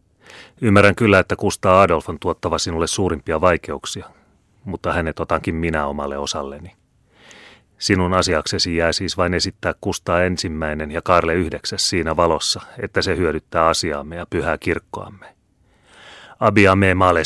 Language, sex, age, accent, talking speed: Finnish, male, 30-49, native, 135 wpm